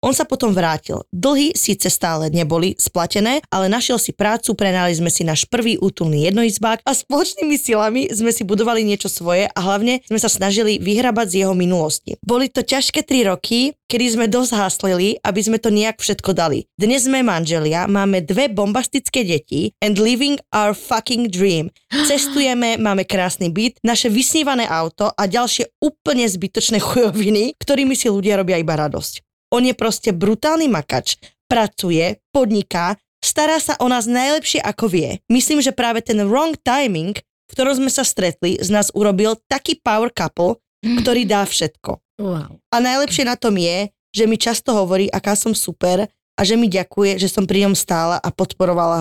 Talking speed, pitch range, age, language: 170 wpm, 185-245 Hz, 20-39, Slovak